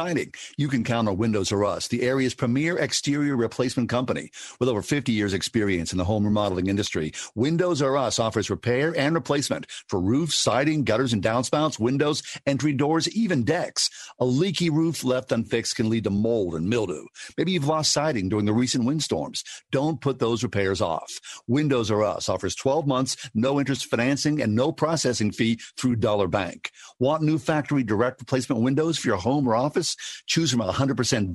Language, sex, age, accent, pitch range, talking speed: English, male, 50-69, American, 115-150 Hz, 180 wpm